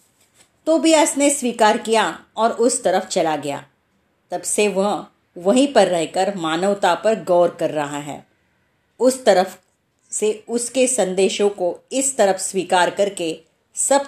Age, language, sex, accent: 30-49, Marathi, female, native